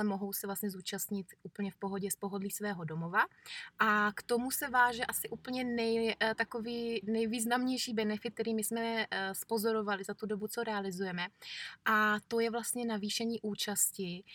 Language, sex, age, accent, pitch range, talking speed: Czech, female, 20-39, native, 200-230 Hz, 160 wpm